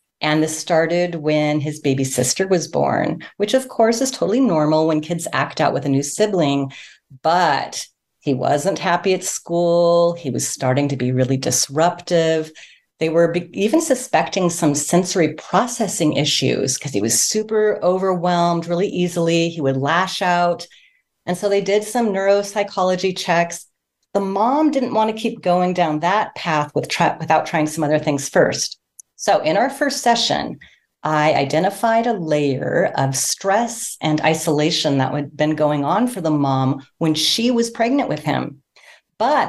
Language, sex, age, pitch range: English, female, 40-59, 155-210 Hz